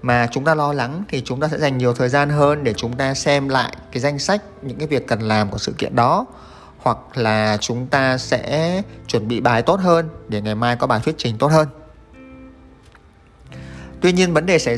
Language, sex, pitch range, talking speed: Vietnamese, male, 110-145 Hz, 225 wpm